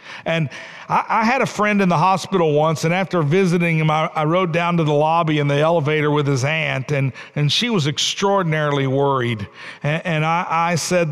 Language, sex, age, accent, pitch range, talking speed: English, male, 50-69, American, 150-205 Hz, 205 wpm